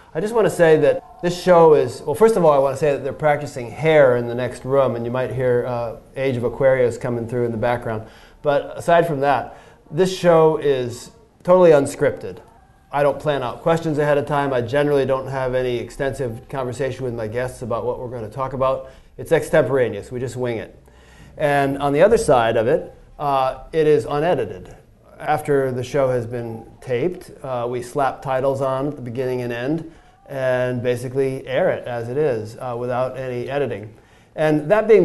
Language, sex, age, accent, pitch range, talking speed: English, male, 30-49, American, 120-145 Hz, 205 wpm